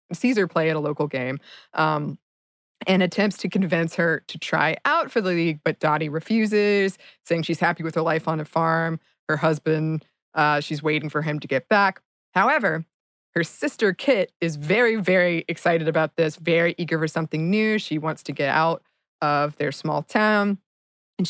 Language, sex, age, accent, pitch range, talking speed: English, female, 20-39, American, 160-200 Hz, 185 wpm